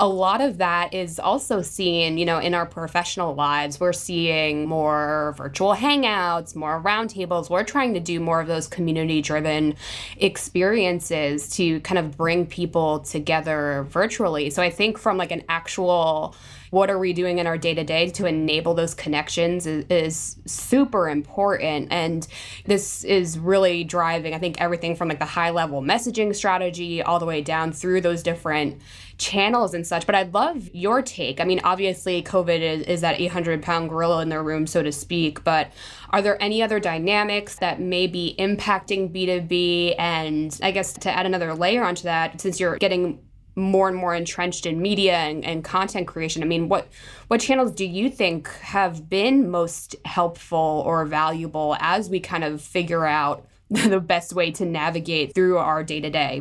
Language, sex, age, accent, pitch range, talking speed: English, female, 20-39, American, 160-190 Hz, 175 wpm